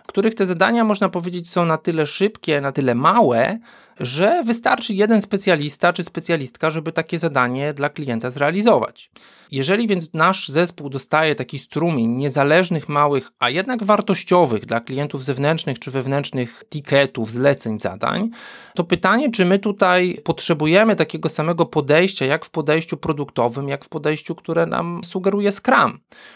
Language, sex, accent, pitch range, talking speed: Polish, male, native, 140-180 Hz, 150 wpm